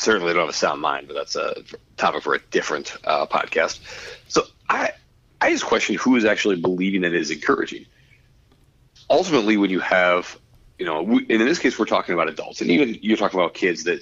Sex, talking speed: male, 225 wpm